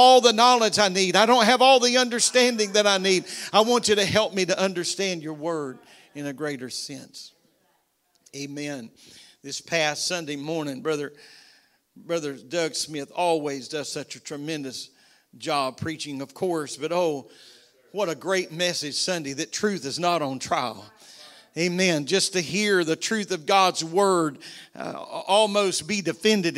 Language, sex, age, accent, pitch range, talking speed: English, male, 50-69, American, 165-210 Hz, 165 wpm